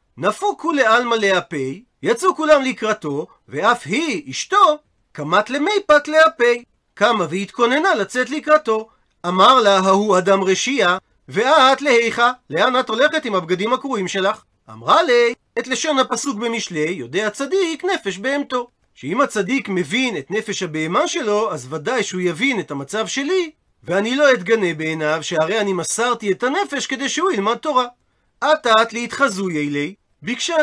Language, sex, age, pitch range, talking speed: Hebrew, male, 40-59, 195-280 Hz, 135 wpm